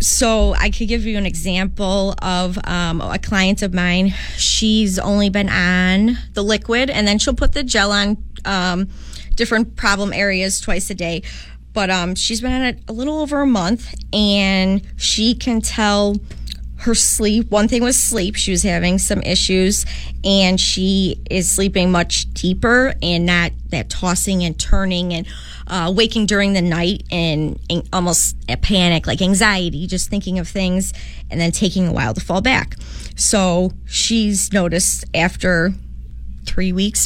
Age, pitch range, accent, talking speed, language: 20-39, 175-210 Hz, American, 165 wpm, English